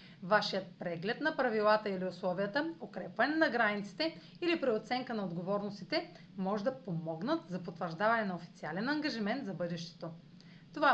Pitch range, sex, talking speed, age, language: 185-250 Hz, female, 130 wpm, 30-49, Bulgarian